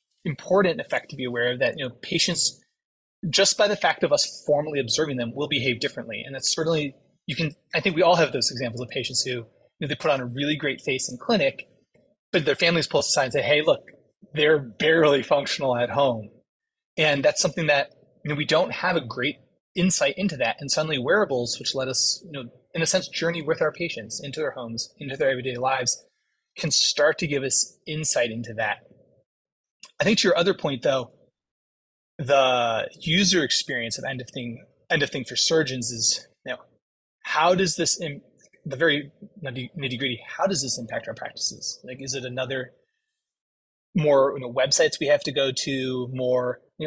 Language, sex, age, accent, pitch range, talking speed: English, male, 30-49, American, 125-165 Hz, 200 wpm